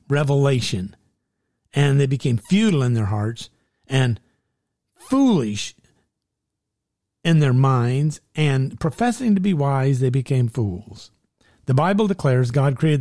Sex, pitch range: male, 115-175 Hz